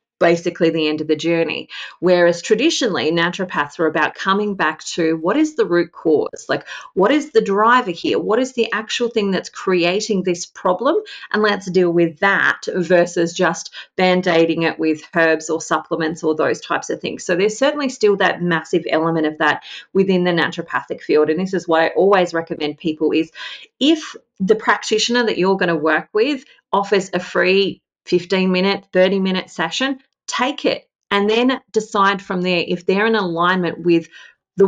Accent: Australian